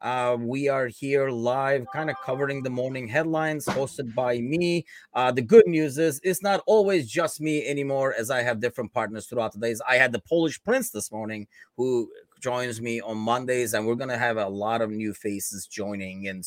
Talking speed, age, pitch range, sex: 210 wpm, 30-49, 115-160 Hz, male